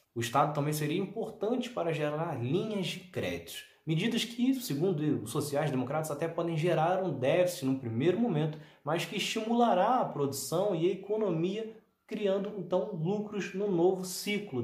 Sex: male